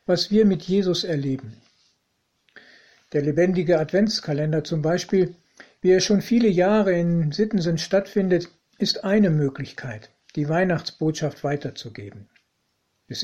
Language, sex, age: German, male, 60-79